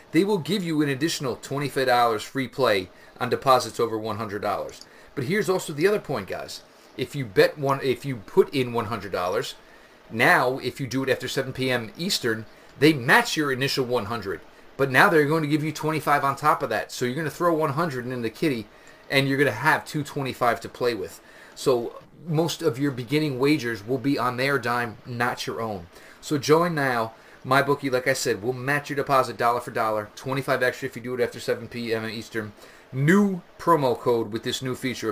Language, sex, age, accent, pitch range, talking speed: English, male, 30-49, American, 120-150 Hz, 215 wpm